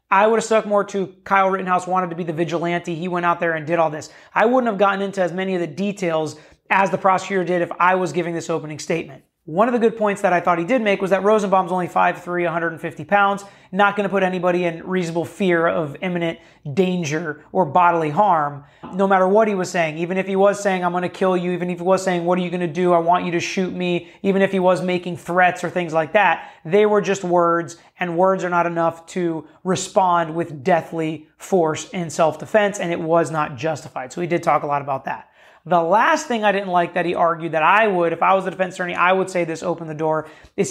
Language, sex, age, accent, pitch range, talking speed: English, male, 30-49, American, 165-195 Hz, 255 wpm